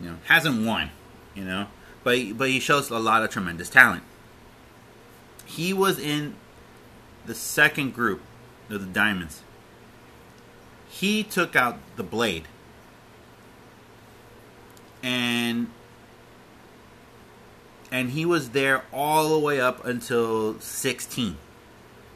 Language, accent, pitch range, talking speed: English, American, 100-125 Hz, 110 wpm